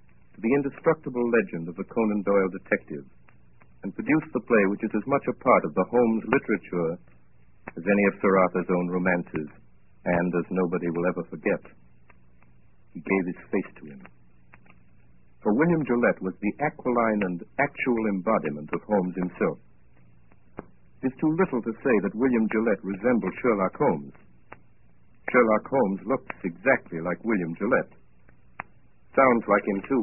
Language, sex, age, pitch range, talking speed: English, male, 60-79, 70-100 Hz, 150 wpm